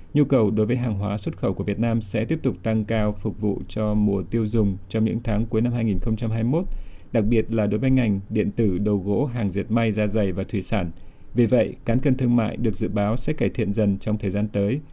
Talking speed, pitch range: 255 wpm, 105-120 Hz